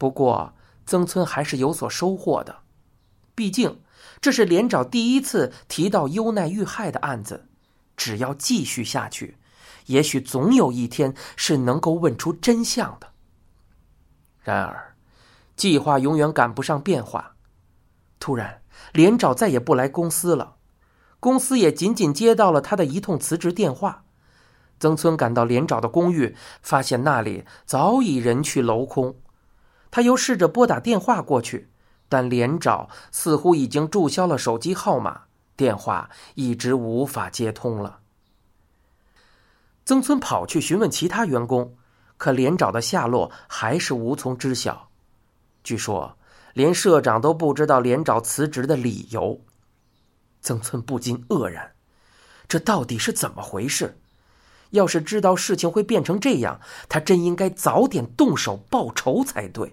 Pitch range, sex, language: 120-185 Hz, male, Chinese